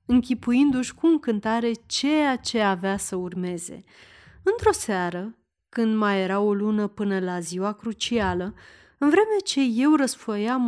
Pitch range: 195-270 Hz